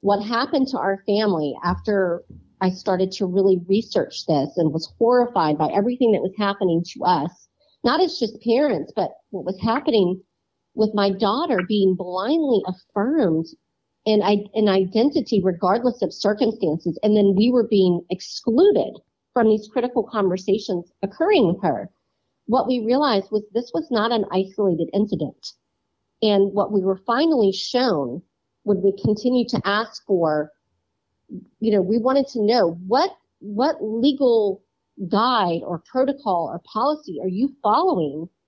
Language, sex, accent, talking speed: English, female, American, 145 wpm